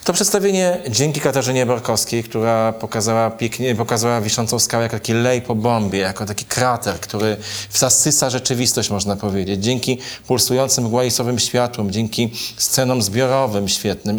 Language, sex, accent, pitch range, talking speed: Polish, male, native, 115-130 Hz, 140 wpm